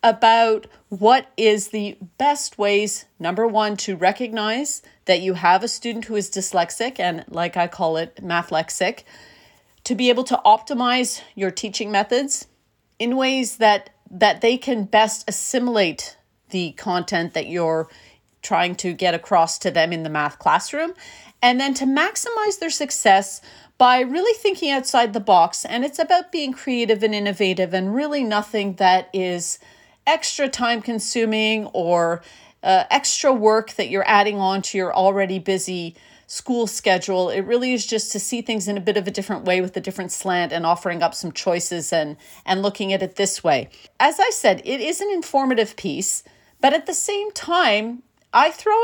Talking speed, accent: 170 wpm, American